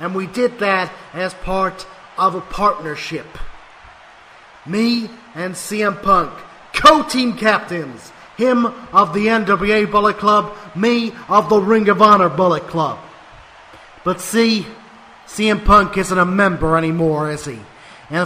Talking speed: 130 wpm